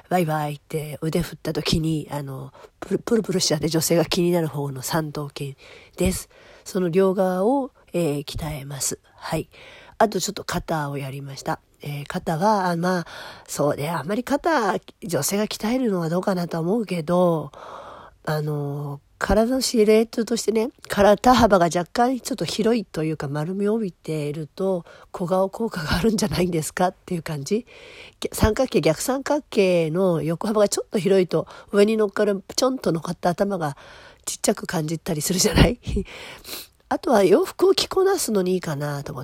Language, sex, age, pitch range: Japanese, female, 40-59, 160-225 Hz